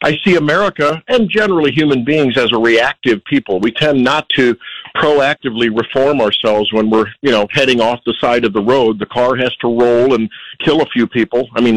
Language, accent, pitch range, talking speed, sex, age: English, American, 130-180 Hz, 210 wpm, male, 50-69